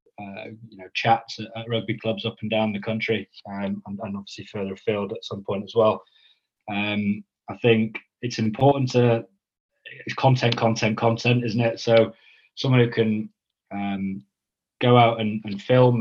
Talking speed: 170 wpm